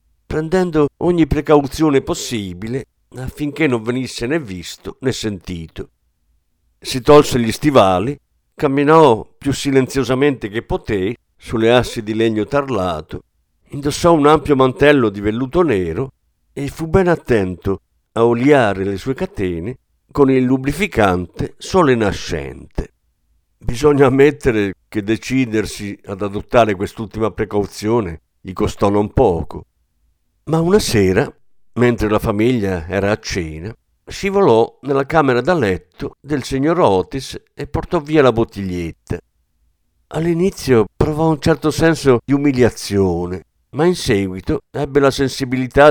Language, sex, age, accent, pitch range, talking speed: Italian, male, 50-69, native, 95-145 Hz, 120 wpm